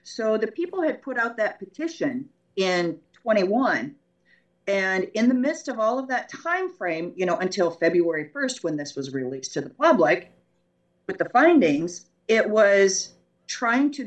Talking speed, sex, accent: 165 wpm, female, American